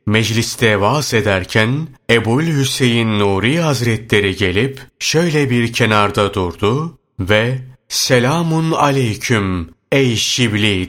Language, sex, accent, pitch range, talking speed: Turkish, male, native, 105-135 Hz, 90 wpm